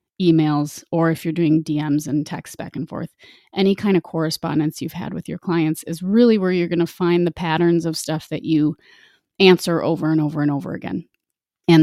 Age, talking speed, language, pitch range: 30-49, 210 wpm, English, 170-215 Hz